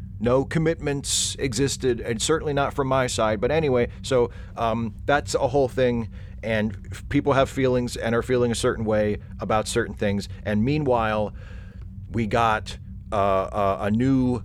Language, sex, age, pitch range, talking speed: English, male, 40-59, 95-115 Hz, 155 wpm